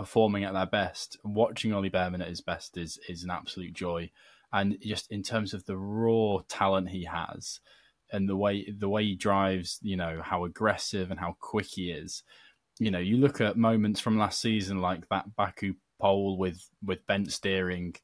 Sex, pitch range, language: male, 95-105 Hz, English